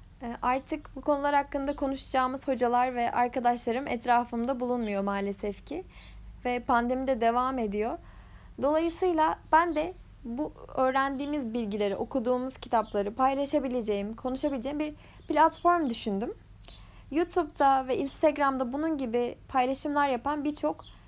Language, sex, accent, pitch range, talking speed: Turkish, female, native, 245-300 Hz, 110 wpm